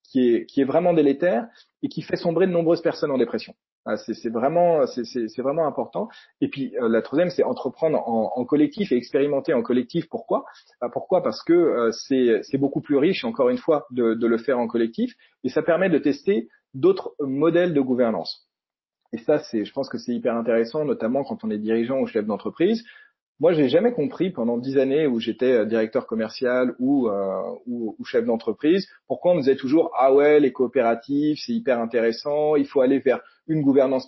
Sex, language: male, French